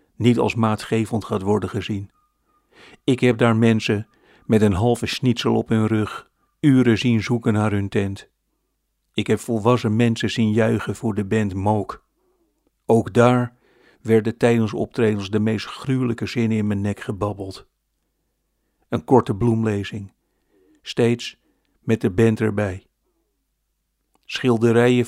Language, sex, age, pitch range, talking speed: Dutch, male, 50-69, 110-120 Hz, 130 wpm